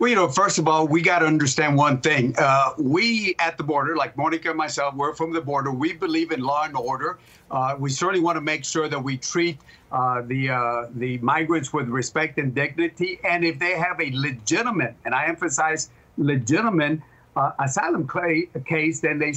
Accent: American